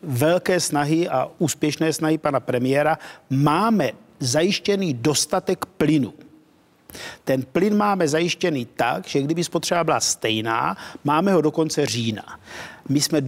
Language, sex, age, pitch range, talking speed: Czech, male, 50-69, 140-180 Hz, 120 wpm